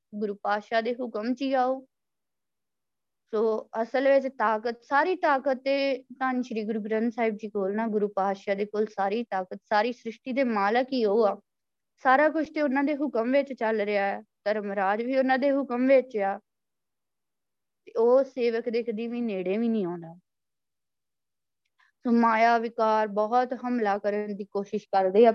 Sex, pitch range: female, 205-250 Hz